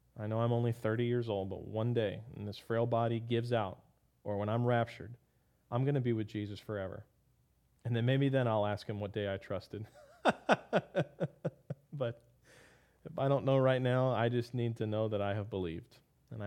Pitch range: 105-120 Hz